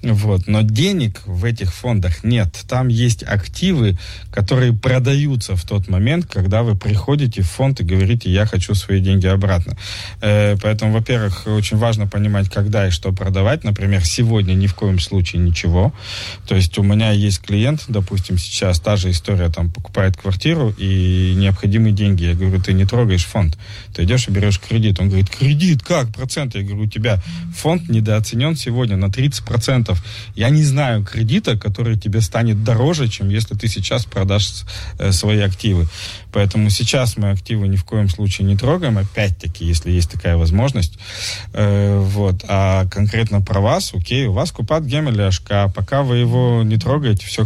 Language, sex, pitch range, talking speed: Russian, male, 95-115 Hz, 170 wpm